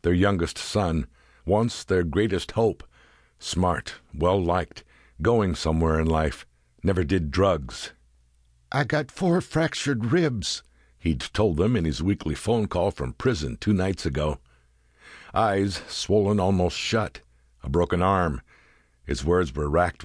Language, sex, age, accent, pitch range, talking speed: English, male, 60-79, American, 70-105 Hz, 135 wpm